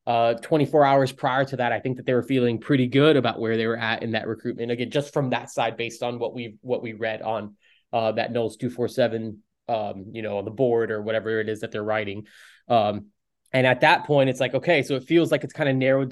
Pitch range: 115-135 Hz